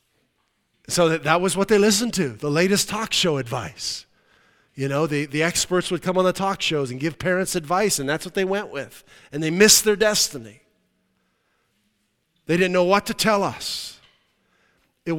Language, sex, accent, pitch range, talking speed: English, male, American, 145-200 Hz, 180 wpm